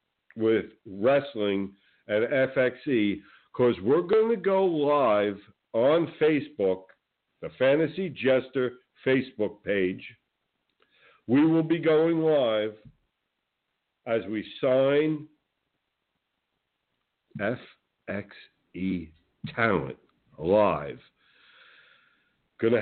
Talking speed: 75 wpm